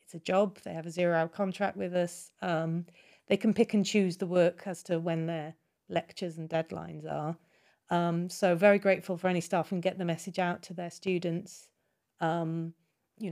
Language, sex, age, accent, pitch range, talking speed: English, female, 40-59, British, 165-190 Hz, 190 wpm